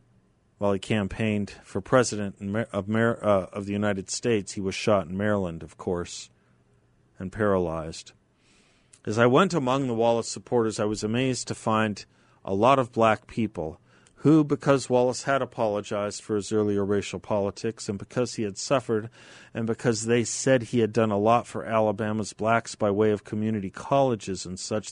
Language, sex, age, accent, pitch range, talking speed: English, male, 40-59, American, 100-120 Hz, 165 wpm